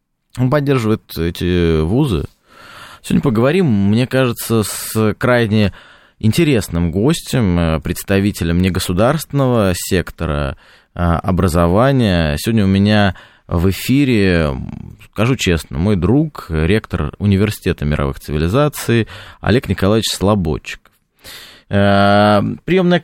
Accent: native